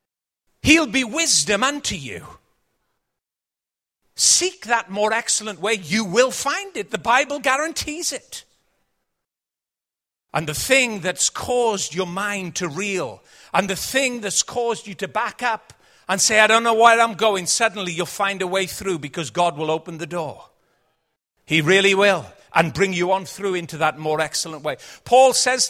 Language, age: English, 50-69